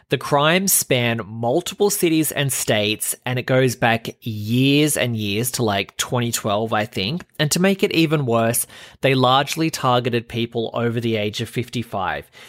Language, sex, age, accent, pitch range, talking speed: English, male, 20-39, Australian, 105-140 Hz, 165 wpm